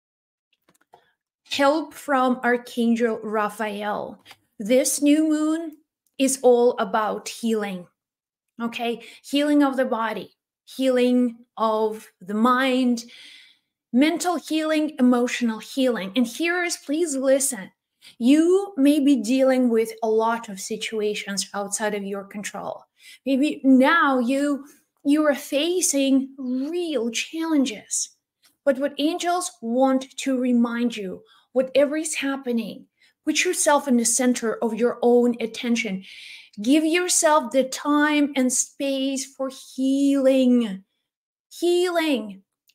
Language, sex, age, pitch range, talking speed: English, female, 30-49, 240-295 Hz, 110 wpm